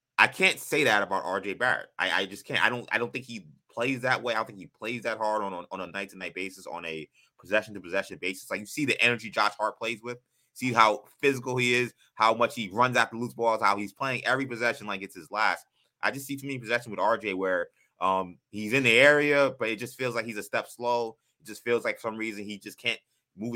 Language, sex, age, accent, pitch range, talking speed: English, male, 20-39, American, 95-125 Hz, 255 wpm